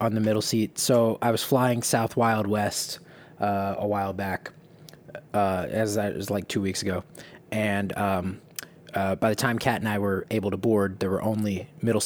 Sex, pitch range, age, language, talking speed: male, 105-155 Hz, 20-39, English, 200 wpm